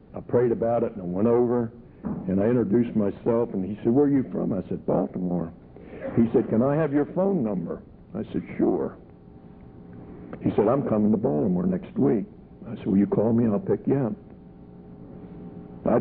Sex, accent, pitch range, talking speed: male, American, 95-120 Hz, 195 wpm